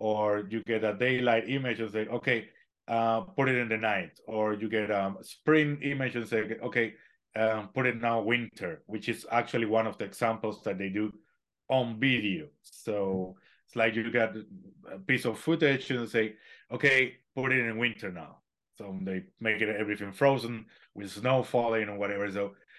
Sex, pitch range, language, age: male, 105-130 Hz, English, 30-49